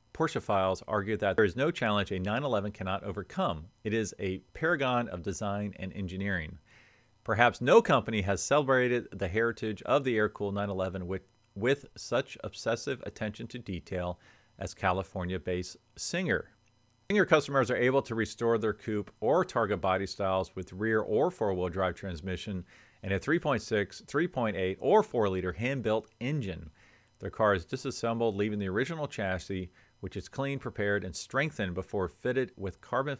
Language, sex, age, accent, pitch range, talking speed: English, male, 40-59, American, 95-115 Hz, 155 wpm